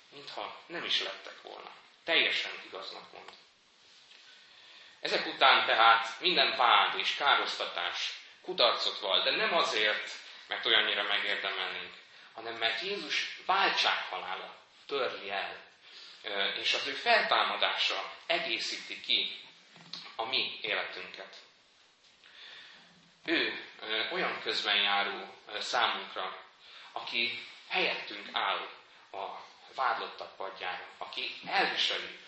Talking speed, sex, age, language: 95 wpm, male, 30-49, Hungarian